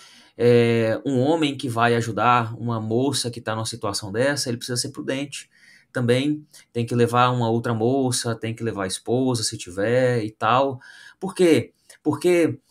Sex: male